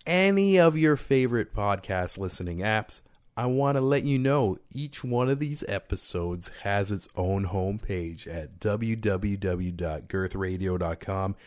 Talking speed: 130 wpm